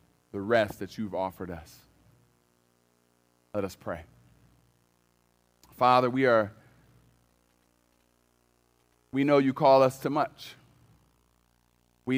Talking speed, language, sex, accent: 100 wpm, English, male, American